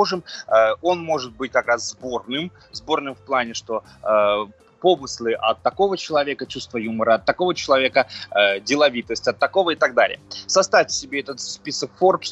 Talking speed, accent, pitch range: 155 wpm, native, 115-145 Hz